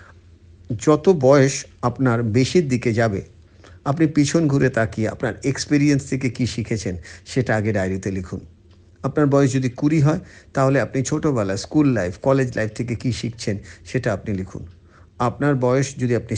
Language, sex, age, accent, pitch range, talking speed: Bengali, male, 50-69, native, 100-135 Hz, 150 wpm